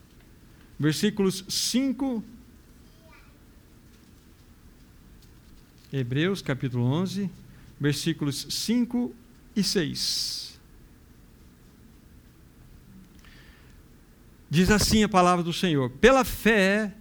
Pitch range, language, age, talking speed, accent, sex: 150-210 Hz, Portuguese, 60-79, 60 wpm, Brazilian, male